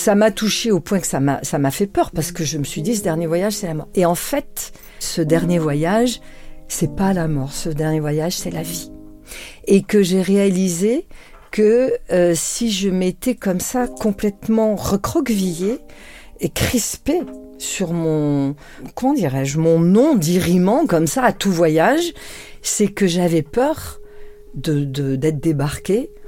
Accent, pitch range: French, 145-200 Hz